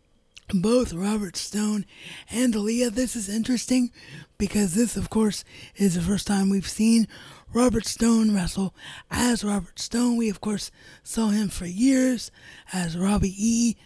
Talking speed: 145 wpm